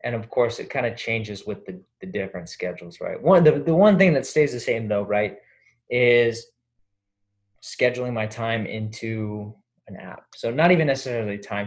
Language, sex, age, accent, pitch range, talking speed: English, male, 20-39, American, 110-140 Hz, 185 wpm